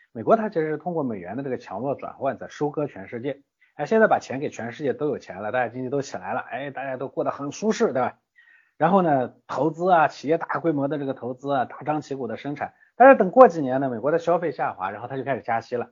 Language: Chinese